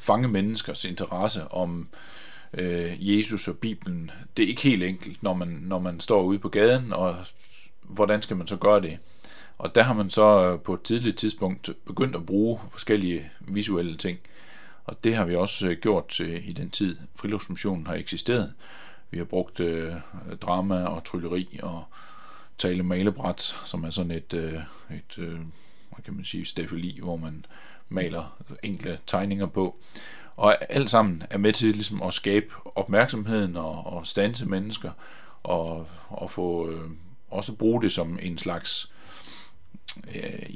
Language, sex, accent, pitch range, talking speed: Danish, male, native, 85-105 Hz, 165 wpm